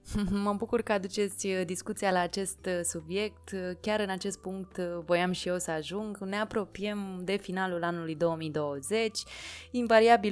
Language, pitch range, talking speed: Romanian, 165-200 Hz, 140 wpm